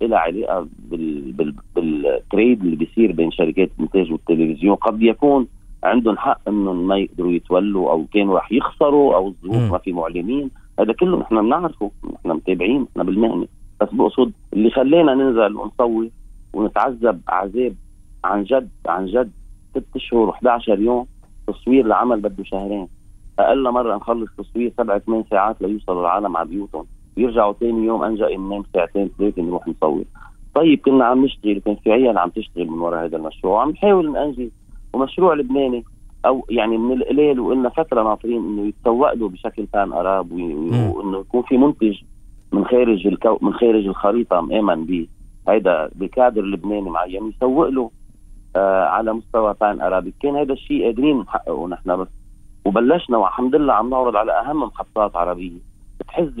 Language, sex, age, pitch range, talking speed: Arabic, male, 40-59, 95-120 Hz, 155 wpm